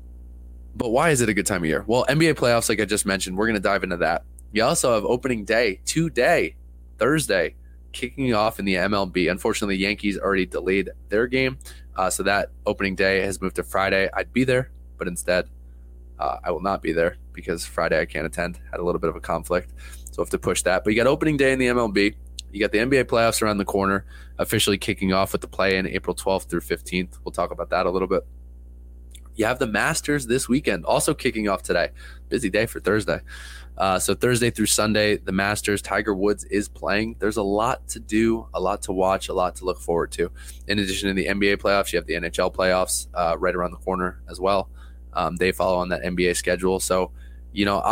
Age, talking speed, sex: 20-39, 225 wpm, male